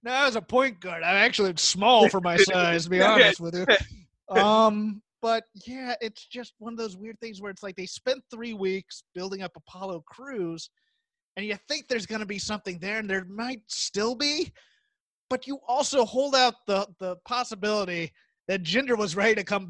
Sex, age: male, 30-49